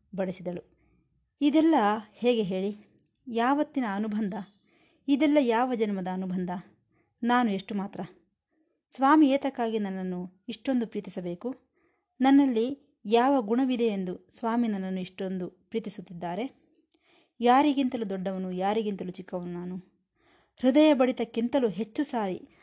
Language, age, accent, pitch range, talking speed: Kannada, 20-39, native, 190-250 Hz, 95 wpm